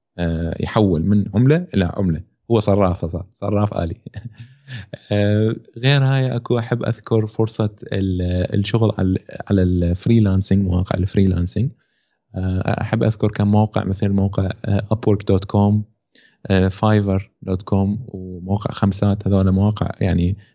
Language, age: Arabic, 20-39